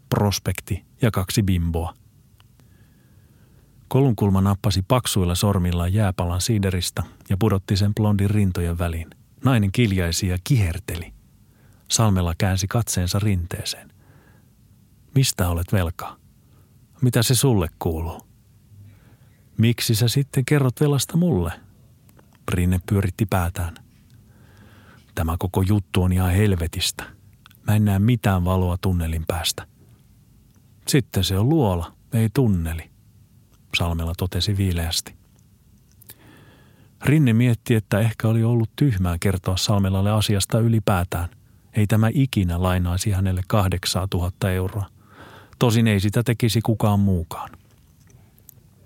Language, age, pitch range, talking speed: Finnish, 40-59, 95-115 Hz, 105 wpm